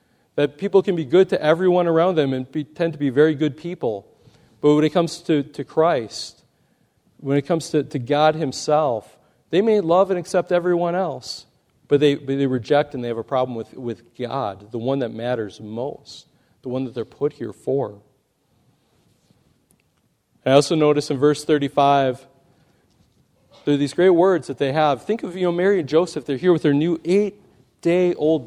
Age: 40-59